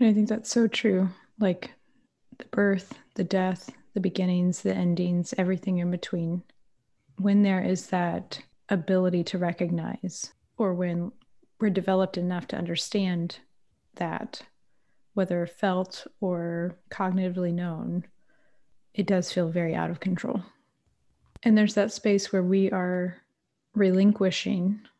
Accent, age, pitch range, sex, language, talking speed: American, 30-49, 180-210 Hz, female, English, 125 wpm